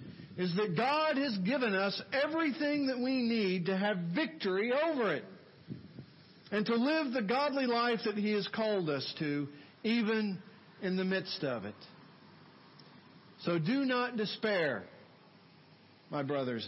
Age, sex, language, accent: 50-69, male, English, American